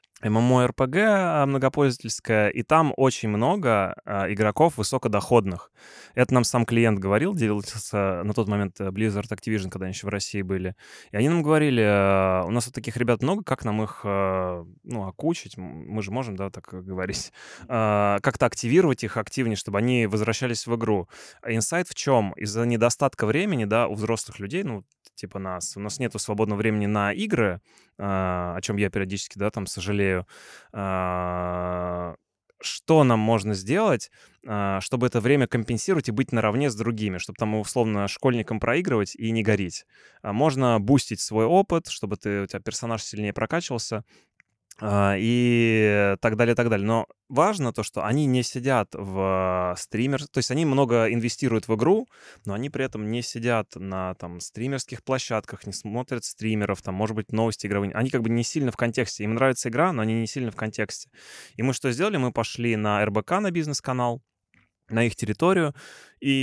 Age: 20-39